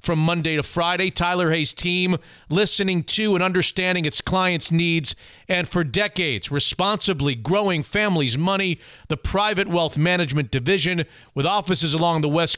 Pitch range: 155-195 Hz